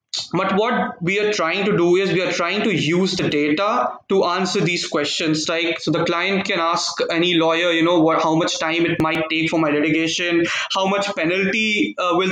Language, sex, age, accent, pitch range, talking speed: English, male, 20-39, Indian, 170-205 Hz, 215 wpm